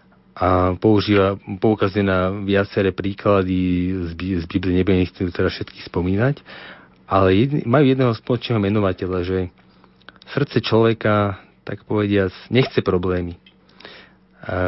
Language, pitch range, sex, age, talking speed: Slovak, 95-115 Hz, male, 40-59, 110 wpm